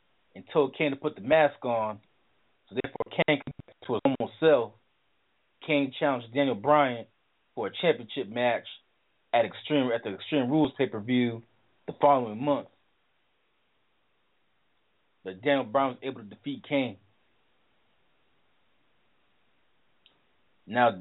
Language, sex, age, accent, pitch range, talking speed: English, male, 30-49, American, 115-140 Hz, 125 wpm